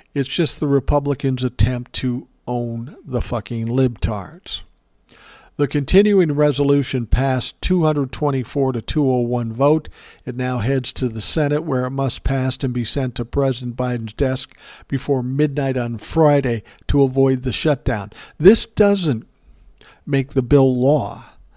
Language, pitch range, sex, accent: English, 125-150 Hz, male, American